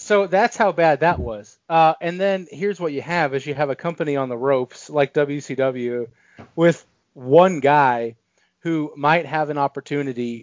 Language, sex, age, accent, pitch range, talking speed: English, male, 30-49, American, 130-160 Hz, 180 wpm